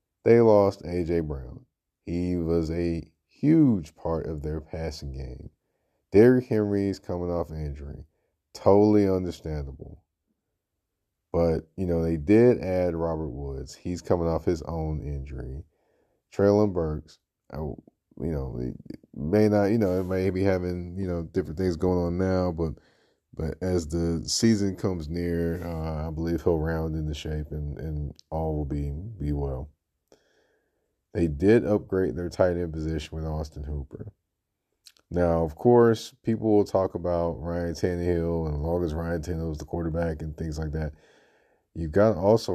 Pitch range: 80-90 Hz